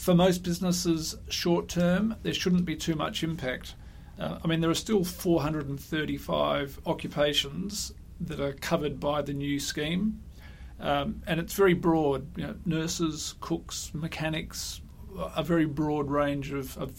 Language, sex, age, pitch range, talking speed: English, male, 40-59, 140-165 Hz, 140 wpm